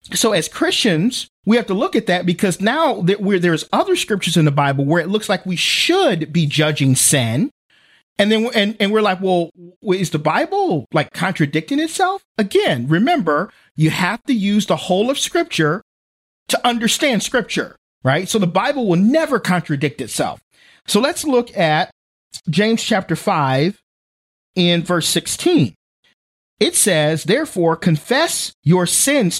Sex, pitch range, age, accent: male, 165-250 Hz, 40-59, American